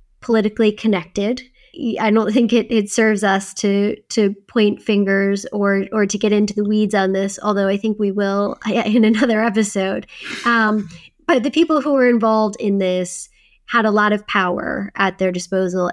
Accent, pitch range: American, 190-230 Hz